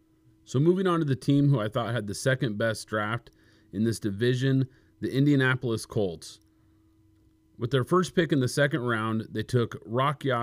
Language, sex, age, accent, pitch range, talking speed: English, male, 30-49, American, 105-140 Hz, 180 wpm